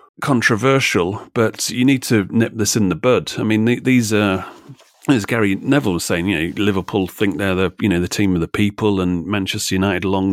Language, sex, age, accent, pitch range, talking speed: English, male, 30-49, British, 95-105 Hz, 210 wpm